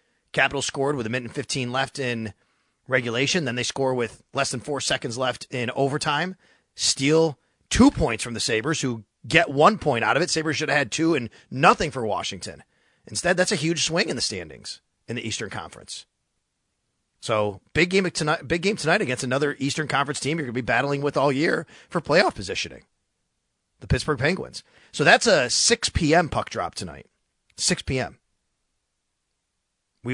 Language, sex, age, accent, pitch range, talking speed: English, male, 30-49, American, 125-165 Hz, 185 wpm